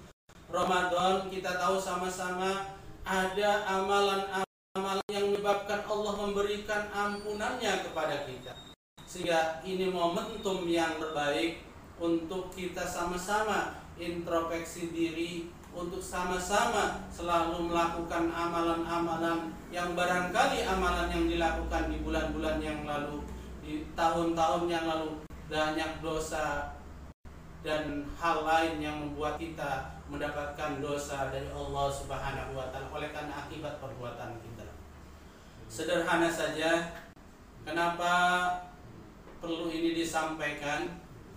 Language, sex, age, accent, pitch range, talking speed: Indonesian, male, 40-59, native, 155-180 Hz, 95 wpm